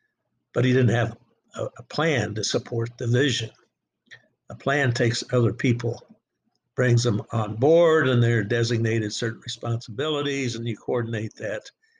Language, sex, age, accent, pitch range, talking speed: English, male, 60-79, American, 115-135 Hz, 140 wpm